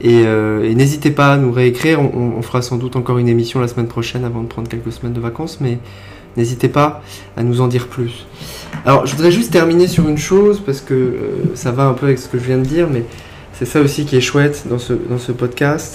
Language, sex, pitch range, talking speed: French, male, 110-135 Hz, 255 wpm